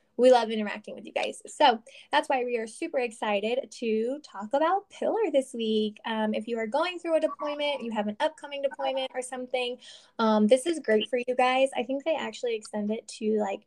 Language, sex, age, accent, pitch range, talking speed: English, female, 10-29, American, 215-275 Hz, 215 wpm